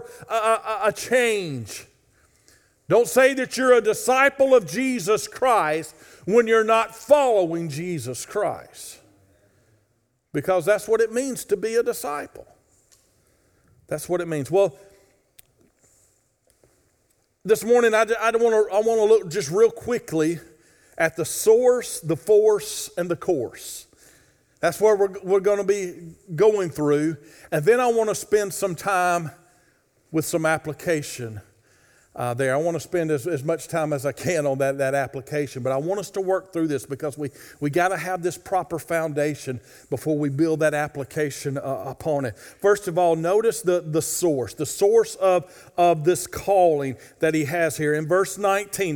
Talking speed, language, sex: 165 wpm, English, male